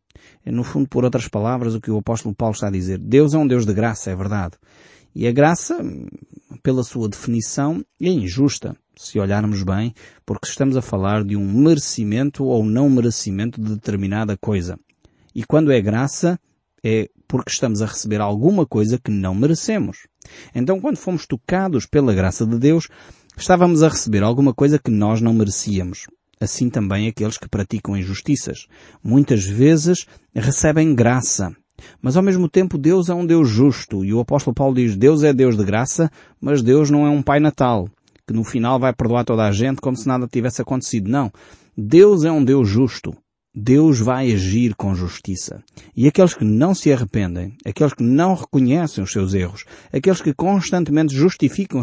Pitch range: 105-145 Hz